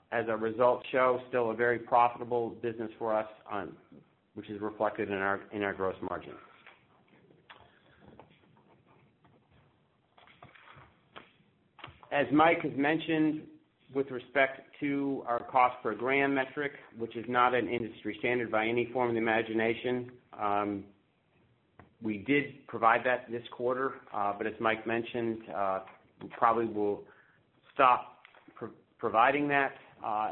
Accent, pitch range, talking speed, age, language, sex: American, 110-125 Hz, 130 wpm, 50-69, English, male